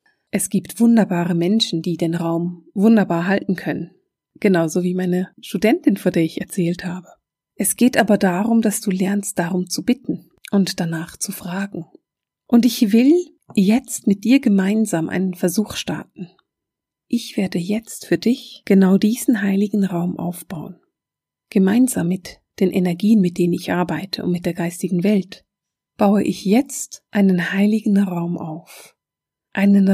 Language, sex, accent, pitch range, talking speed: German, female, German, 180-220 Hz, 150 wpm